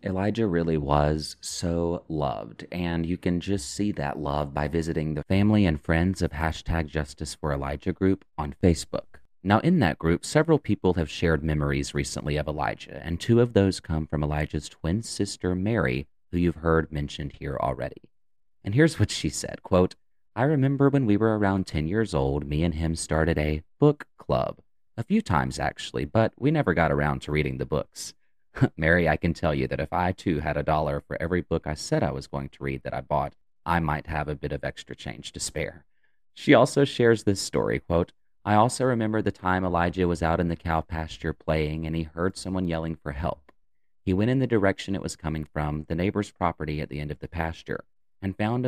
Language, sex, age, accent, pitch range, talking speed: English, male, 30-49, American, 75-95 Hz, 210 wpm